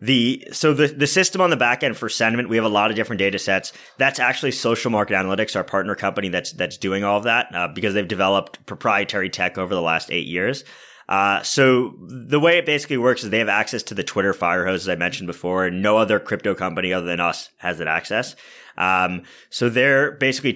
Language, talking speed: English, 230 wpm